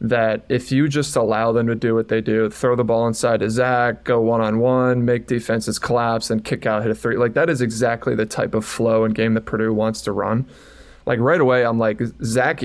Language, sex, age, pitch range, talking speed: English, male, 20-39, 110-125 Hz, 240 wpm